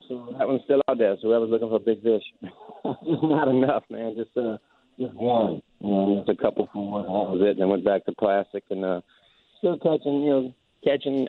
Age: 50-69